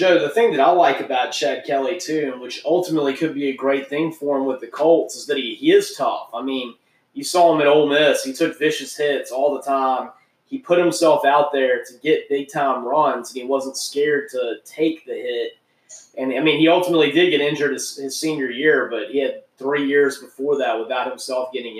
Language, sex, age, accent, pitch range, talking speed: English, male, 20-39, American, 135-170 Hz, 225 wpm